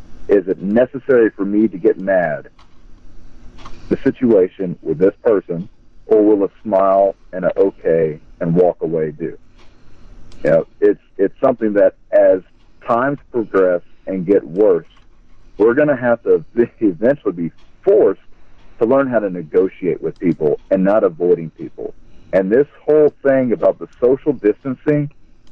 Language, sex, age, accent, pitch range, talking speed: English, male, 50-69, American, 95-150 Hz, 150 wpm